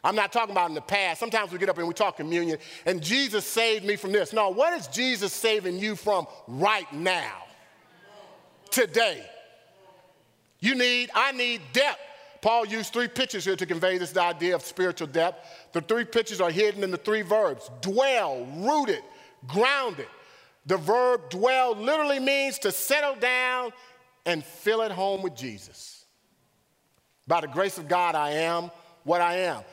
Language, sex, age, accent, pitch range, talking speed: English, male, 40-59, American, 175-245 Hz, 170 wpm